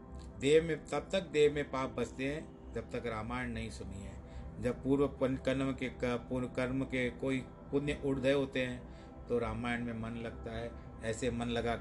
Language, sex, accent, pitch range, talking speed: Hindi, male, native, 115-130 Hz, 185 wpm